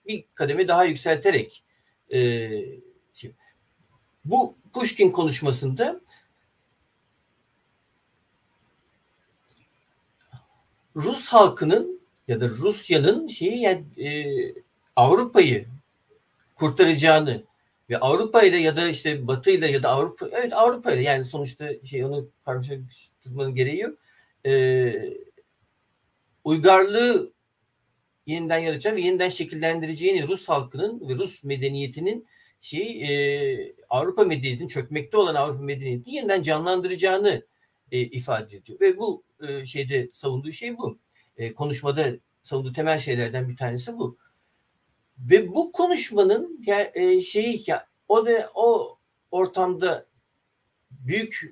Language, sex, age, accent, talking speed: Turkish, male, 60-79, native, 105 wpm